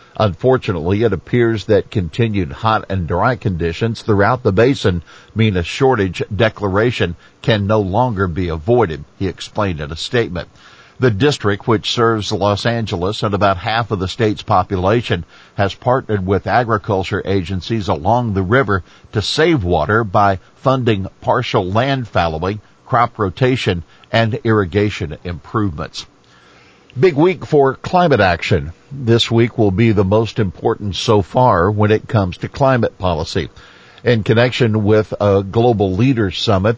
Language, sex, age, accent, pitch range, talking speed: English, male, 50-69, American, 100-120 Hz, 140 wpm